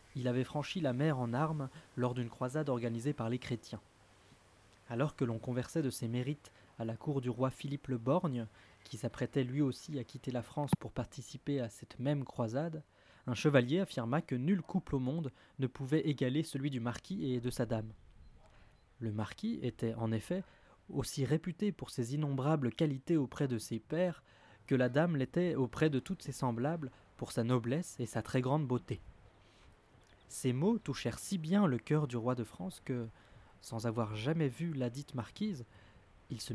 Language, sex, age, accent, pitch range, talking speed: French, male, 20-39, French, 115-145 Hz, 185 wpm